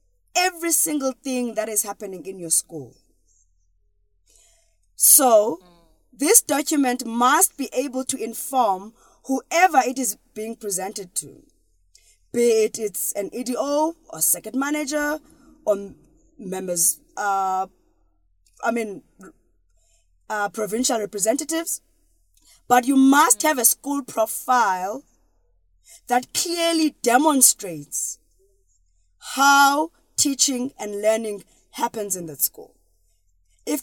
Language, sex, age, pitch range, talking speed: English, female, 20-39, 175-270 Hz, 105 wpm